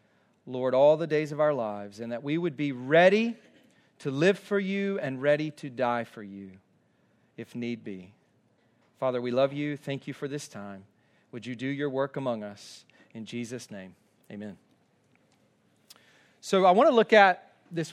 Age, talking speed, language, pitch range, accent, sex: 40-59, 175 wpm, English, 145-190 Hz, American, male